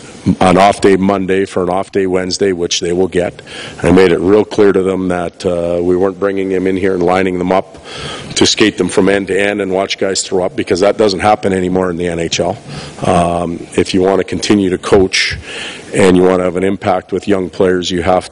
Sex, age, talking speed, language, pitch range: male, 40-59, 235 wpm, English, 90-100 Hz